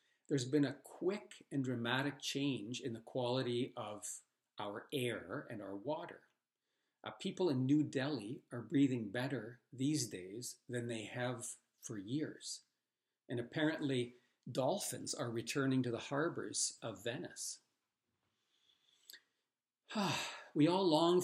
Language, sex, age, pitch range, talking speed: English, male, 50-69, 120-150 Hz, 125 wpm